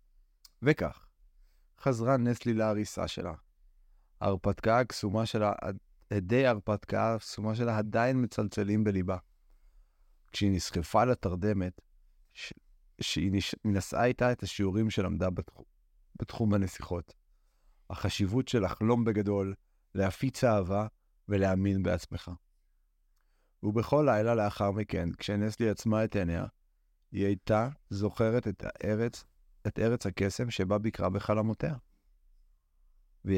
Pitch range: 85-110 Hz